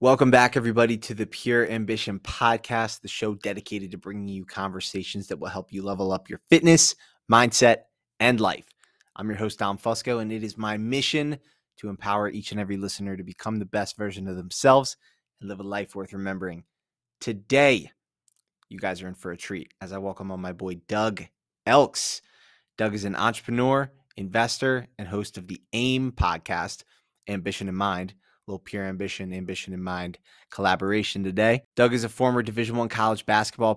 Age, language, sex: 20-39, English, male